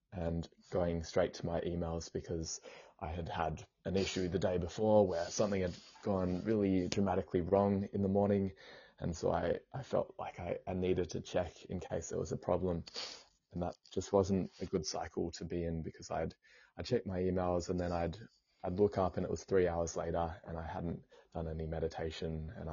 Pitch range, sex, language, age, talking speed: 80-95 Hz, male, English, 20-39, 205 wpm